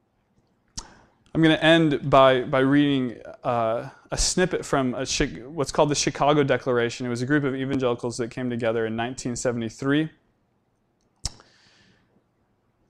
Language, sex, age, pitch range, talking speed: English, male, 20-39, 120-175 Hz, 130 wpm